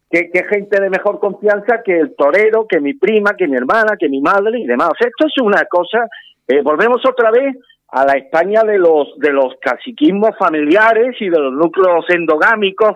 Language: Spanish